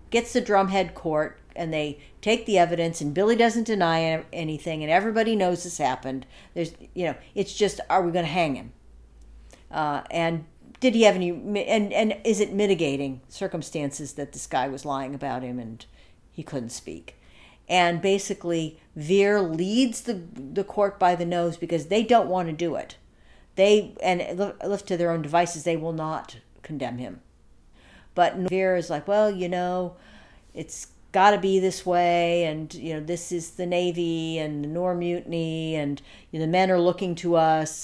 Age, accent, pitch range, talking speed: 50-69, American, 150-190 Hz, 180 wpm